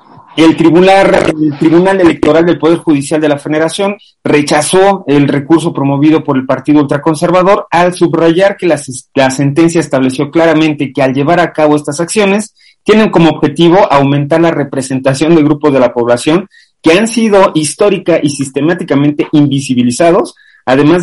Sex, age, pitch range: male, 40-59, 130-165 Hz